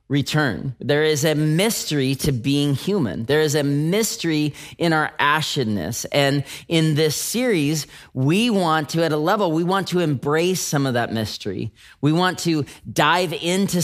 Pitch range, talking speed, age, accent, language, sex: 145-185 Hz, 165 wpm, 30-49, American, English, male